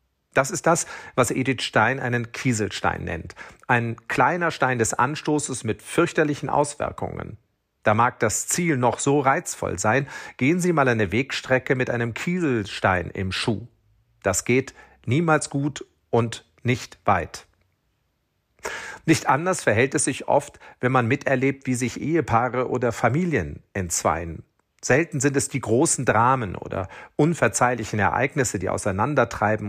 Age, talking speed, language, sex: 40-59, 135 wpm, German, male